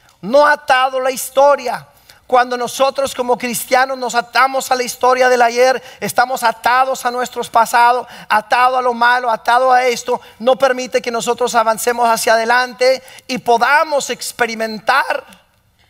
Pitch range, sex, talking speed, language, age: 210-260 Hz, male, 140 wpm, English, 40-59